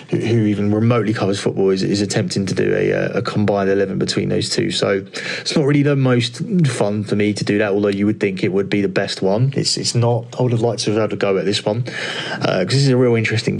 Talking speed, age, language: 270 wpm, 20-39, English